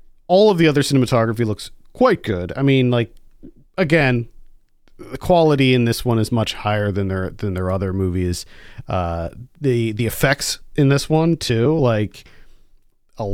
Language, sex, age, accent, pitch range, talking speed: English, male, 40-59, American, 105-130 Hz, 155 wpm